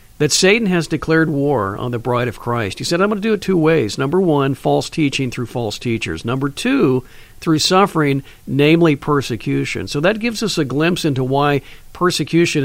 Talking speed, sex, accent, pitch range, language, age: 195 wpm, male, American, 130-170 Hz, English, 50-69